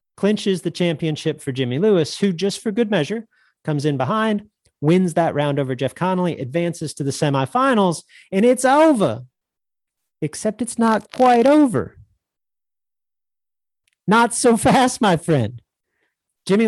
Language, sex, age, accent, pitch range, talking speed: English, male, 40-59, American, 140-215 Hz, 135 wpm